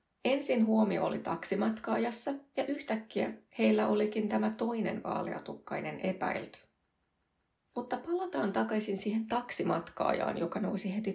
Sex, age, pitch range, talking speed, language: female, 30-49, 180-235 Hz, 110 wpm, Finnish